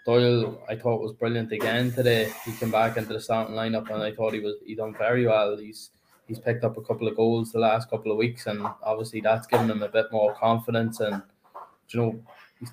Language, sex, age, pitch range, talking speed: English, male, 20-39, 110-120 Hz, 230 wpm